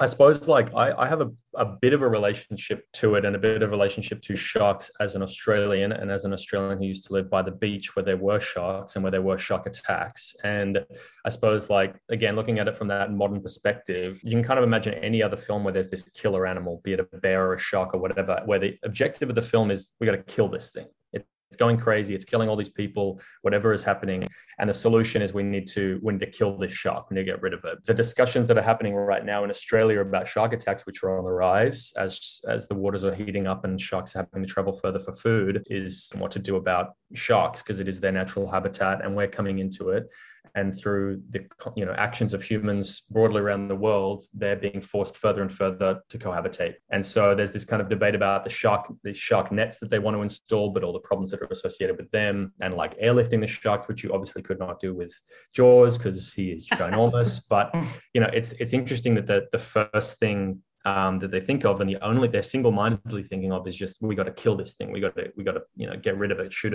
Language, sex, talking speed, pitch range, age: English, male, 250 wpm, 95-115 Hz, 20-39